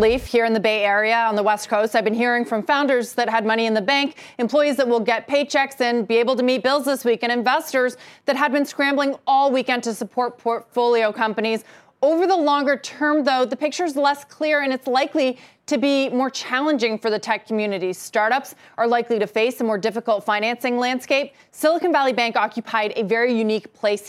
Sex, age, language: female, 30-49, English